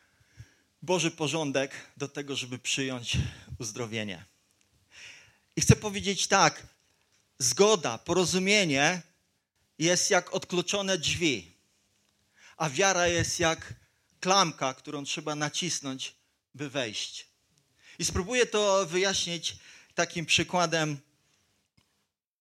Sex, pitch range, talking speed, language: male, 135-175 Hz, 90 wpm, Polish